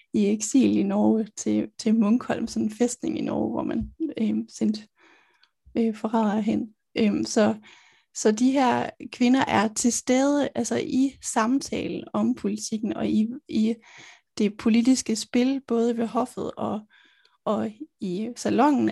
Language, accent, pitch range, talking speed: Danish, native, 215-245 Hz, 145 wpm